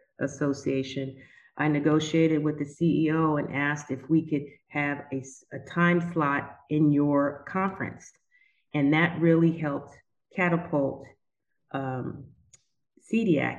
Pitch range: 135-160 Hz